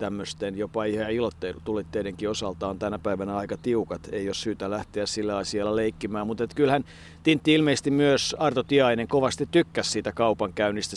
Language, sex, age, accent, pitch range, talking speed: Finnish, male, 50-69, native, 105-140 Hz, 150 wpm